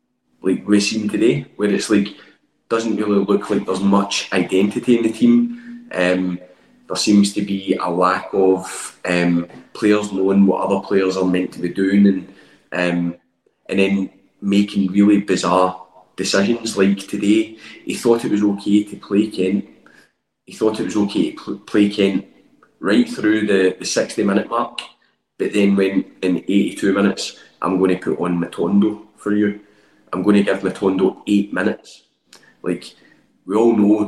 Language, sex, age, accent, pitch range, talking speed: English, male, 20-39, British, 95-110 Hz, 170 wpm